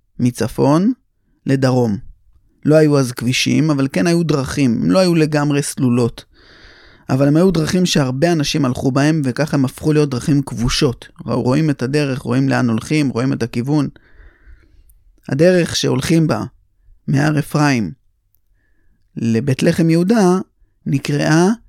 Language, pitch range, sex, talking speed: Hebrew, 115-160 Hz, male, 130 wpm